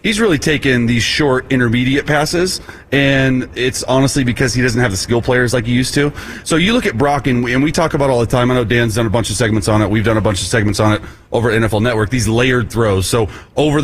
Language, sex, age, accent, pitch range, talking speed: English, male, 30-49, American, 115-140 Hz, 275 wpm